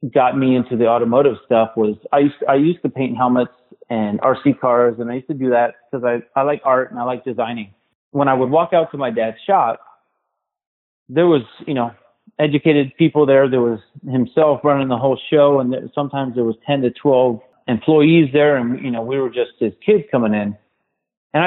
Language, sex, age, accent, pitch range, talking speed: English, male, 30-49, American, 120-145 Hz, 220 wpm